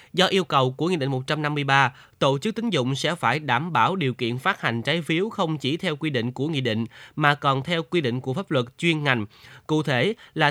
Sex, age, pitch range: male, 20-39, 130-175 Hz